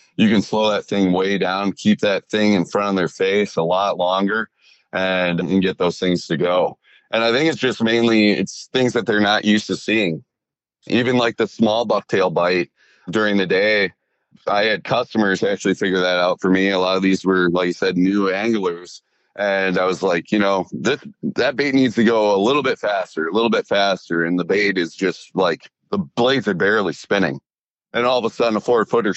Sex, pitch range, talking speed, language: male, 95-115 Hz, 220 wpm, English